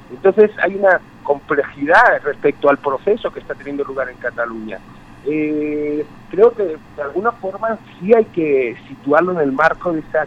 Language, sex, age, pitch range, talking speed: Spanish, male, 50-69, 135-190 Hz, 165 wpm